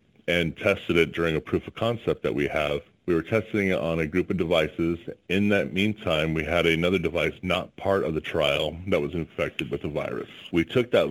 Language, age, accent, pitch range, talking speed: English, 30-49, American, 80-90 Hz, 220 wpm